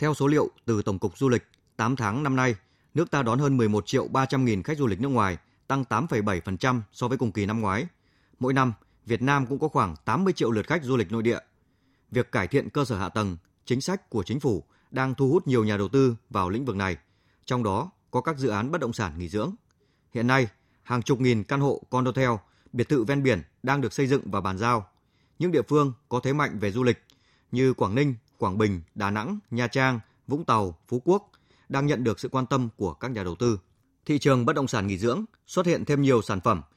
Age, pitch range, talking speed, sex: 20-39, 110-140 Hz, 240 wpm, male